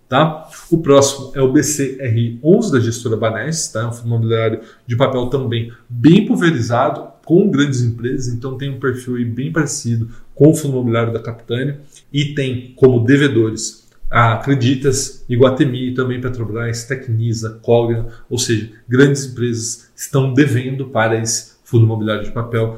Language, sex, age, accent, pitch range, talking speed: Portuguese, male, 20-39, Brazilian, 115-135 Hz, 155 wpm